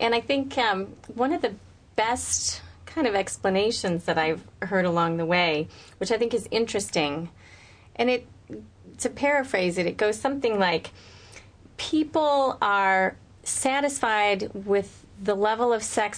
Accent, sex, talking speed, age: American, female, 145 wpm, 30-49